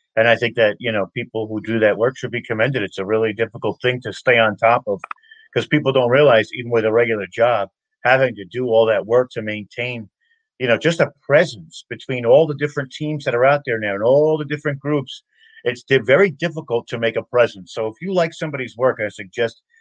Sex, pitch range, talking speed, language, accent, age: male, 115-145 Hz, 230 wpm, English, American, 50-69